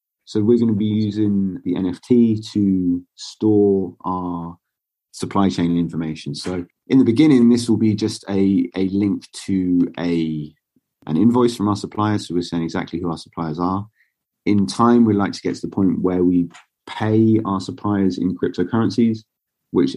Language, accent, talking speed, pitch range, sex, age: English, British, 170 wpm, 85-105 Hz, male, 30-49